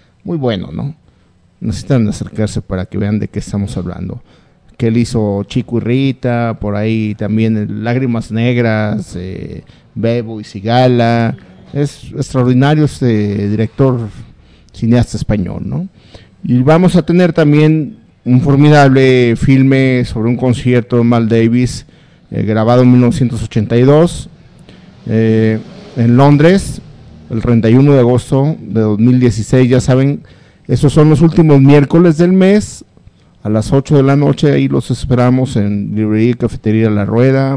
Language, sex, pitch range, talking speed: Spanish, male, 110-145 Hz, 135 wpm